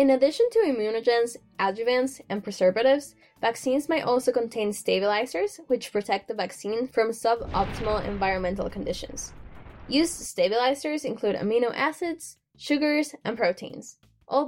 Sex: female